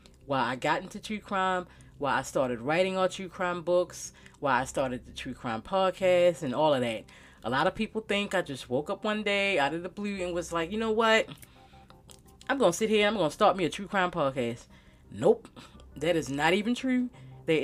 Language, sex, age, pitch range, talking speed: English, female, 30-49, 135-190 Hz, 230 wpm